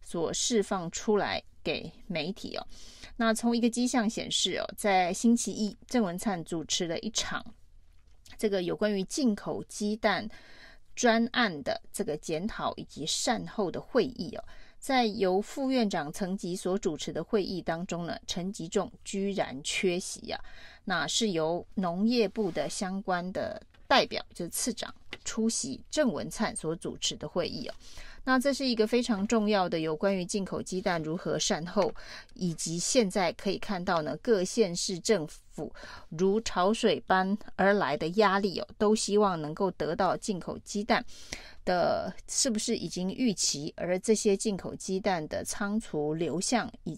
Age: 30-49